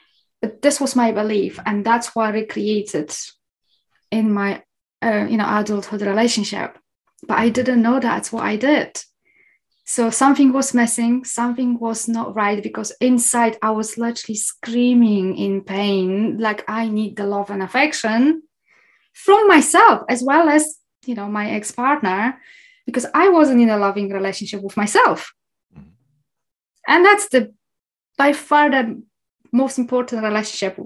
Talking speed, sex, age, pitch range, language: 150 wpm, female, 20-39, 200-250 Hz, English